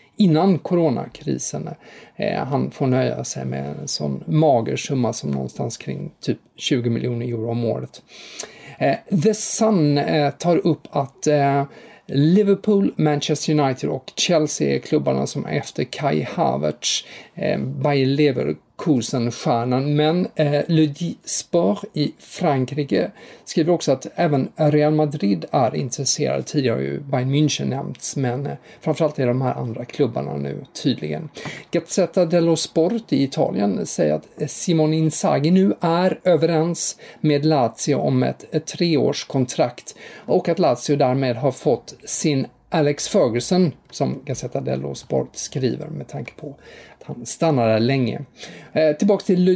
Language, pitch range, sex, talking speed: English, 130-170 Hz, male, 125 wpm